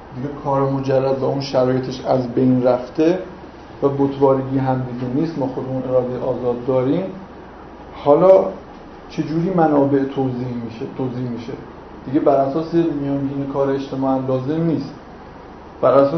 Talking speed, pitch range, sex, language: 125 wpm, 130-160 Hz, male, Persian